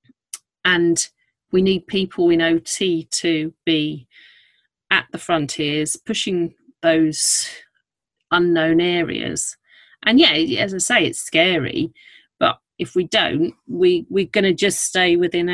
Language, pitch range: English, 165-240 Hz